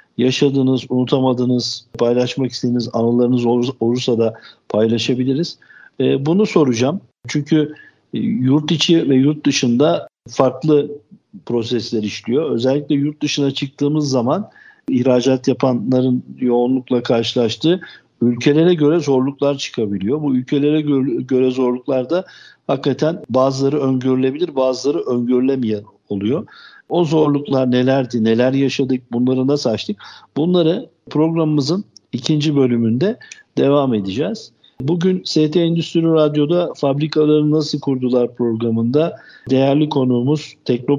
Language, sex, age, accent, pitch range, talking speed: Turkish, male, 60-79, native, 125-150 Hz, 100 wpm